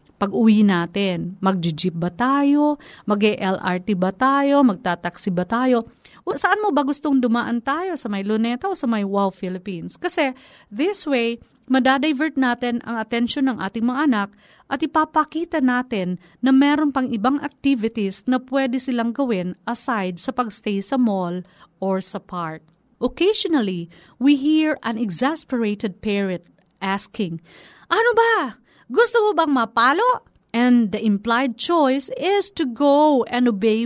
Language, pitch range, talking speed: Filipino, 200-275 Hz, 140 wpm